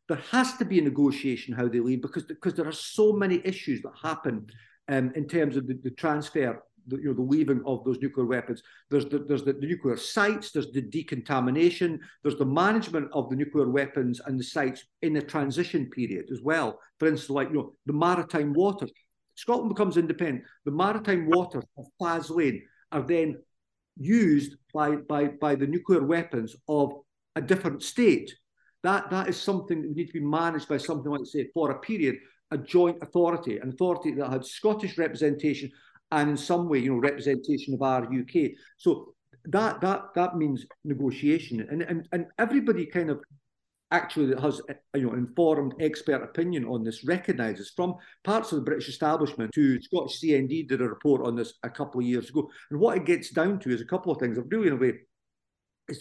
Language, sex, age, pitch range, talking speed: English, male, 50-69, 130-170 Hz, 195 wpm